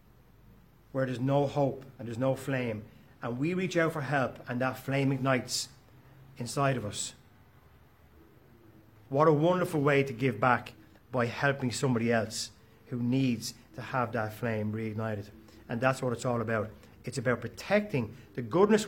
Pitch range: 115-140 Hz